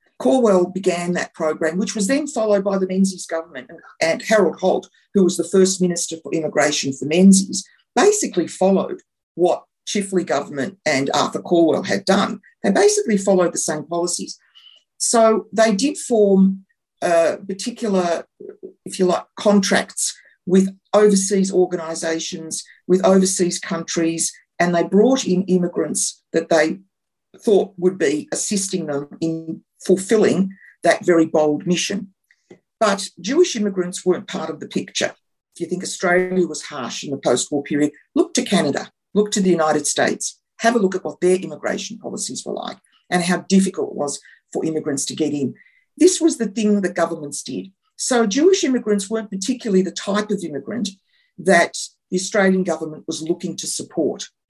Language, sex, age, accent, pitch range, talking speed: English, female, 50-69, Australian, 170-215 Hz, 160 wpm